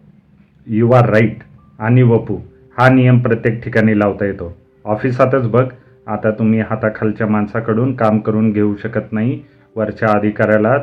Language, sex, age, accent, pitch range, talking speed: Marathi, male, 30-49, native, 100-115 Hz, 135 wpm